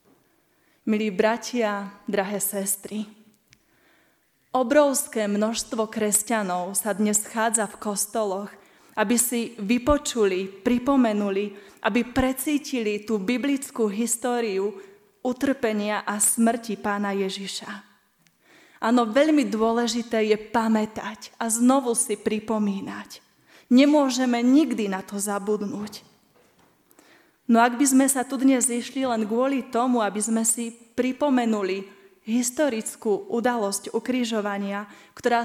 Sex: female